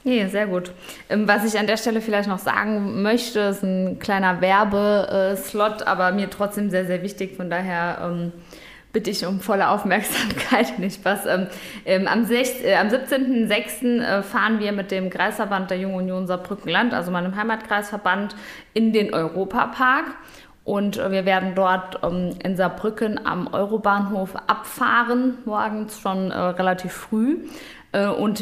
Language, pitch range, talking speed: German, 180-210 Hz, 135 wpm